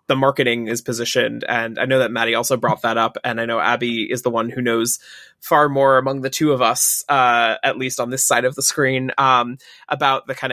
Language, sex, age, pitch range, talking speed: English, male, 20-39, 120-135 Hz, 240 wpm